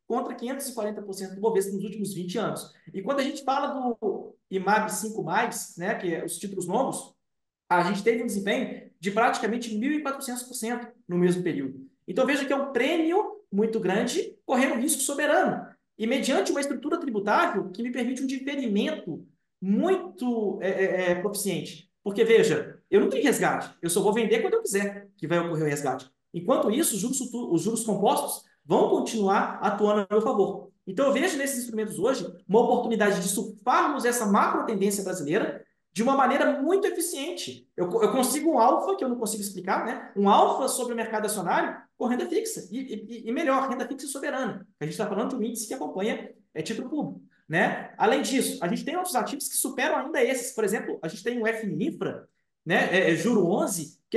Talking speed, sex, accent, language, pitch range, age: 185 wpm, male, Brazilian, Portuguese, 200-265 Hz, 20-39